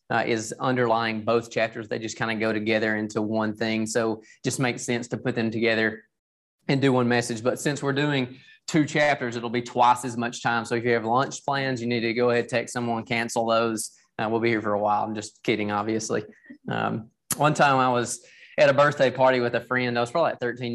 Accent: American